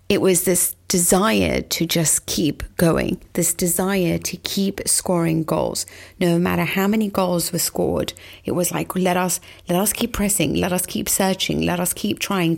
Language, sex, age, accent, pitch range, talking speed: English, female, 30-49, British, 165-195 Hz, 180 wpm